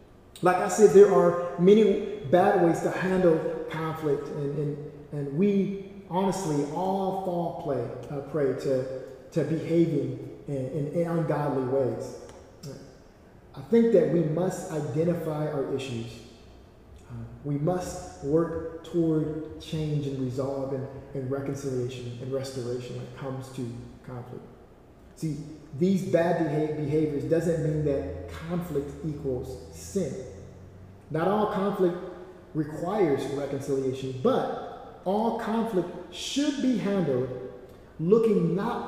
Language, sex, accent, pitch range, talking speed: English, male, American, 135-195 Hz, 120 wpm